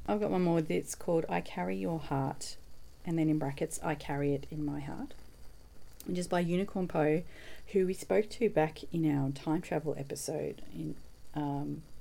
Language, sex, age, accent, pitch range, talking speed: English, female, 40-59, Australian, 135-160 Hz, 185 wpm